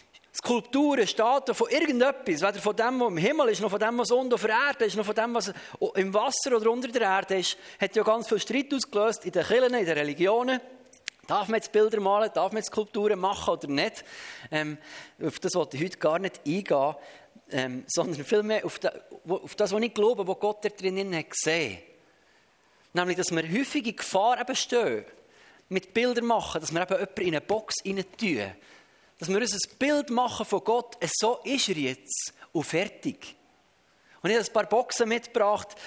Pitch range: 190-235 Hz